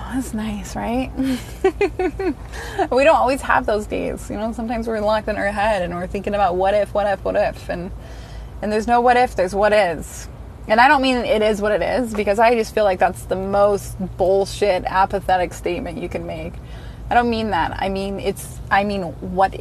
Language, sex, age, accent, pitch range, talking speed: English, female, 20-39, American, 195-235 Hz, 210 wpm